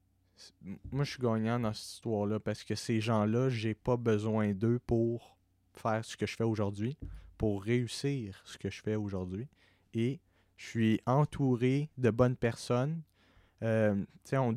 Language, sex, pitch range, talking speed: French, male, 110-130 Hz, 160 wpm